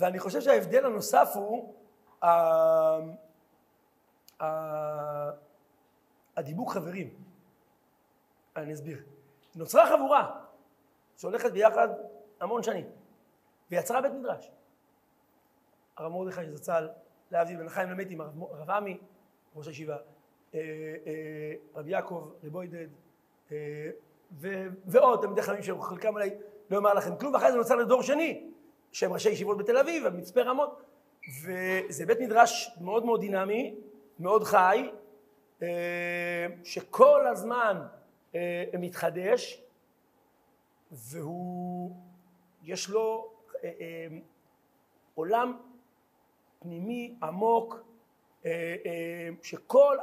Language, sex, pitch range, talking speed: Hebrew, male, 165-240 Hz, 95 wpm